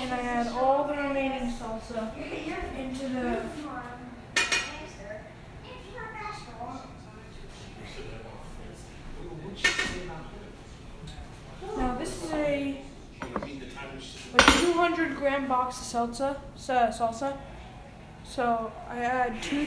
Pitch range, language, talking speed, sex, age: 235-270 Hz, English, 75 wpm, female, 10-29